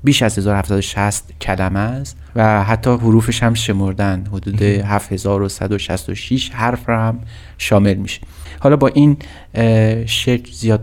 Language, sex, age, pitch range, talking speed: Persian, male, 30-49, 100-125 Hz, 120 wpm